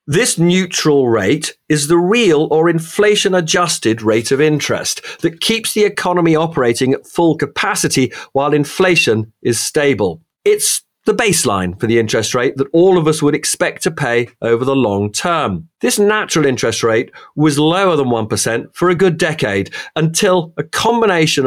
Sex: male